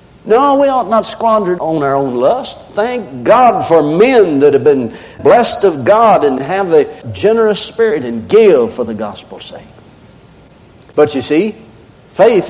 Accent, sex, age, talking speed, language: American, male, 60-79, 165 wpm, English